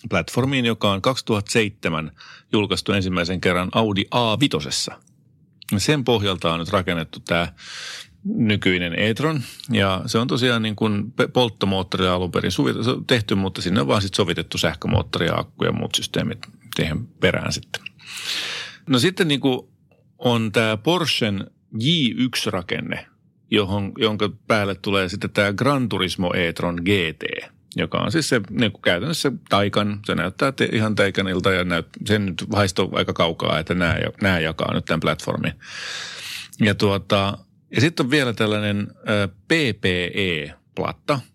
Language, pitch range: Finnish, 95-115 Hz